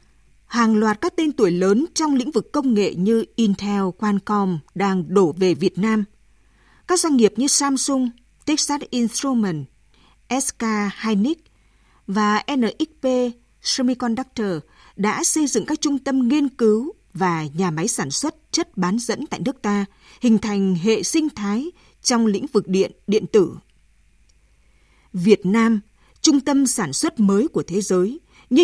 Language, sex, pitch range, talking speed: Vietnamese, female, 195-260 Hz, 150 wpm